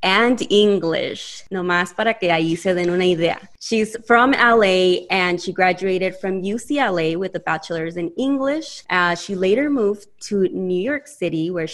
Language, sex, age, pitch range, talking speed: English, female, 20-39, 180-230 Hz, 165 wpm